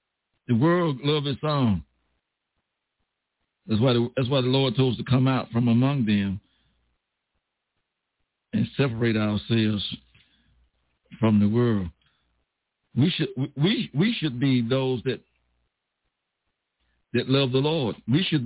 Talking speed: 130 wpm